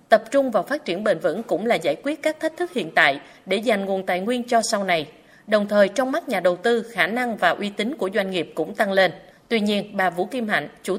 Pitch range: 175-230 Hz